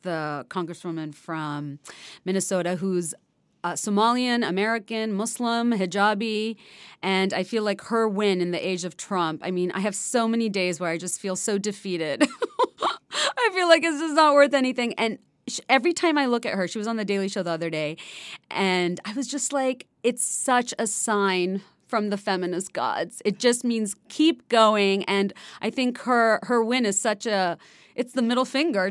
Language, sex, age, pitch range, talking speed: English, female, 30-49, 170-235 Hz, 185 wpm